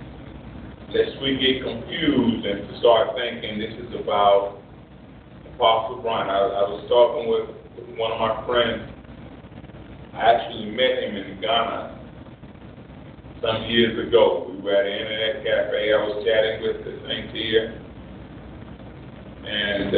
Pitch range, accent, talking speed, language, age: 105-140 Hz, American, 135 wpm, English, 40-59